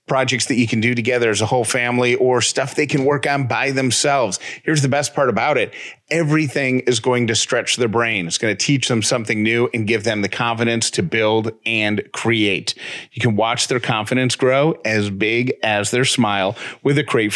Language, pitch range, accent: English, 115-150 Hz, American